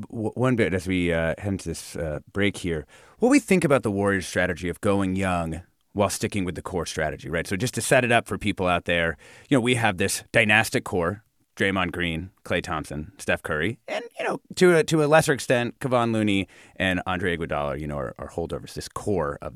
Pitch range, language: 95-145 Hz, English